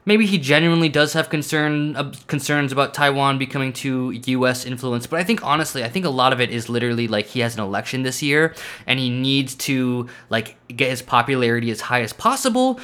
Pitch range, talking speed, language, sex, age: 125-160 Hz, 210 wpm, English, male, 20-39